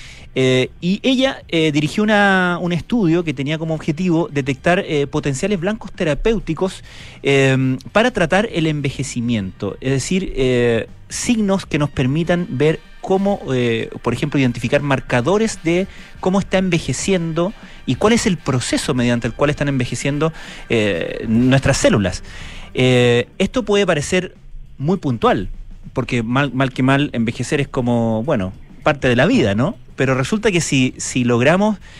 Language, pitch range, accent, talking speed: Spanish, 120-165 Hz, Argentinian, 145 wpm